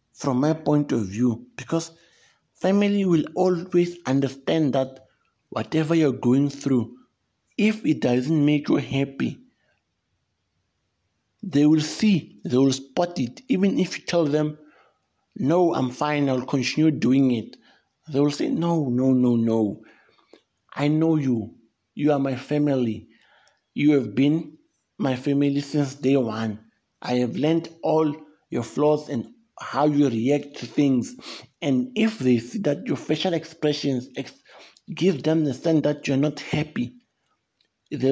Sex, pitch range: male, 125-155 Hz